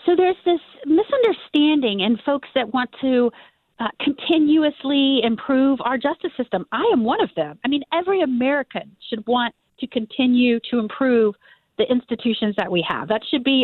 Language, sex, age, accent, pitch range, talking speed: English, female, 40-59, American, 220-285 Hz, 165 wpm